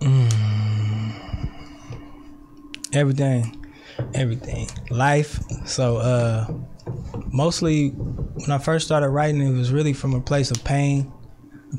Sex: male